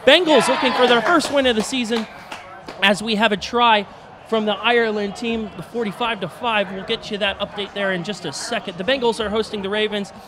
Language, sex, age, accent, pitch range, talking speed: English, male, 30-49, American, 195-240 Hz, 220 wpm